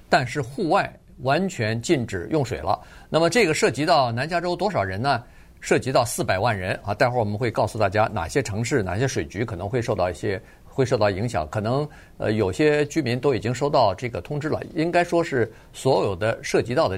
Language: Chinese